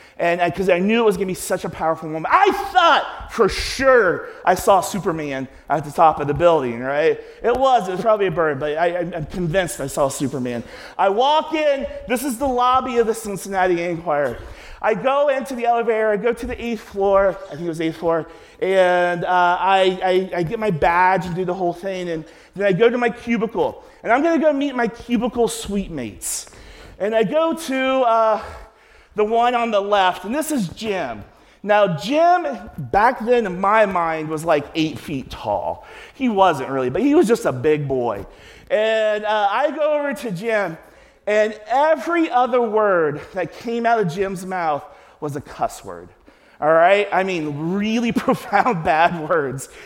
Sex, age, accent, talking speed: male, 40-59, American, 200 wpm